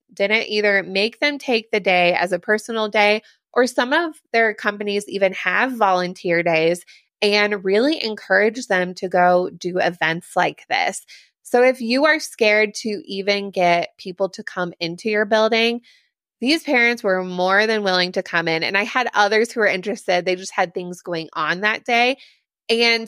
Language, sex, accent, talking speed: English, female, American, 180 wpm